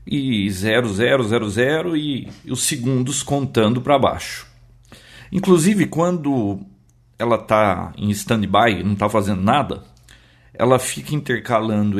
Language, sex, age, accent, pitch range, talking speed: Portuguese, male, 50-69, Brazilian, 105-140 Hz, 105 wpm